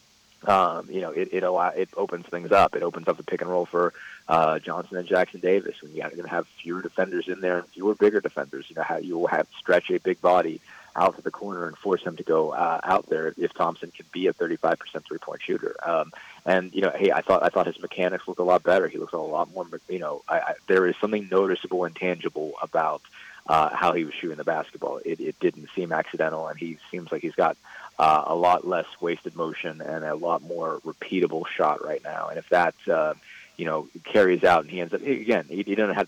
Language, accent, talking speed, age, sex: English, American, 240 wpm, 30-49, male